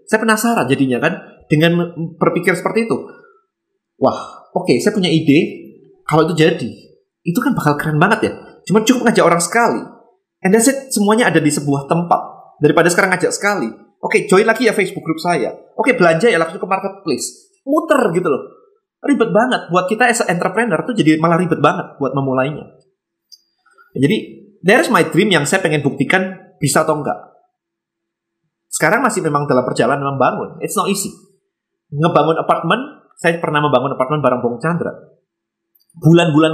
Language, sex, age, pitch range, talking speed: Indonesian, male, 20-39, 155-220 Hz, 165 wpm